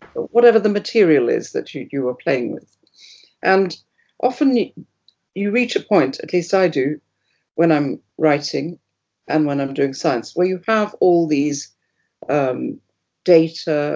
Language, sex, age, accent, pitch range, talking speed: English, female, 50-69, British, 155-195 Hz, 140 wpm